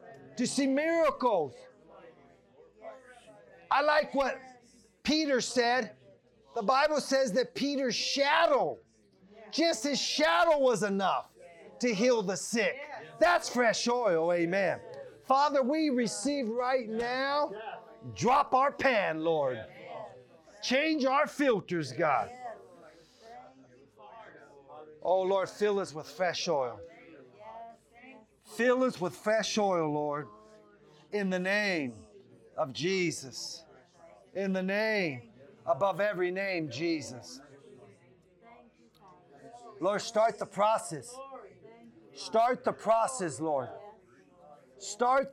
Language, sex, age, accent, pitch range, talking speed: English, male, 40-59, American, 160-250 Hz, 100 wpm